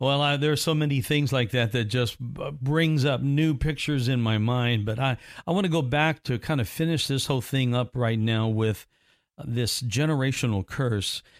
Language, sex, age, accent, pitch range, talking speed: English, male, 50-69, American, 115-145 Hz, 205 wpm